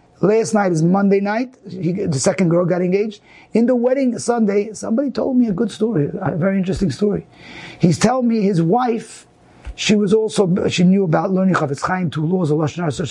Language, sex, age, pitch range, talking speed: English, male, 30-49, 180-225 Hz, 200 wpm